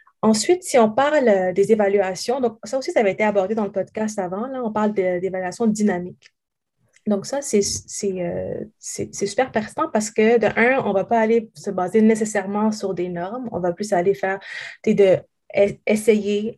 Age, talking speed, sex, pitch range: 20-39, 195 wpm, female, 190-230 Hz